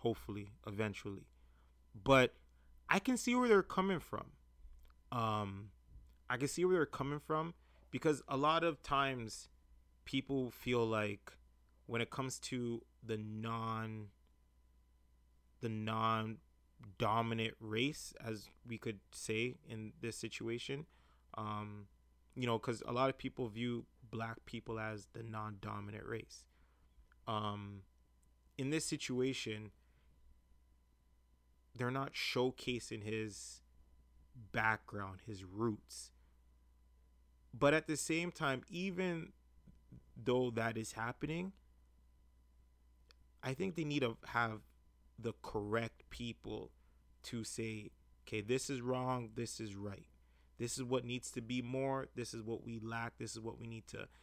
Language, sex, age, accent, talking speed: English, male, 20-39, American, 130 wpm